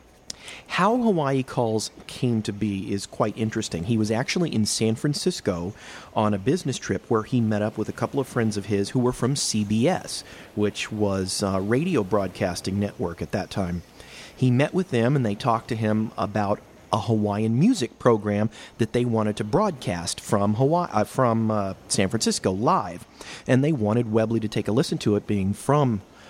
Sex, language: male, English